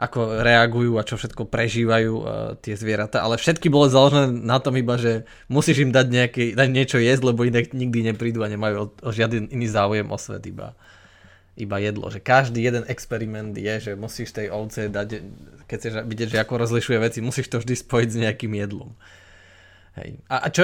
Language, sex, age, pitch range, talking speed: Slovak, male, 20-39, 110-130 Hz, 195 wpm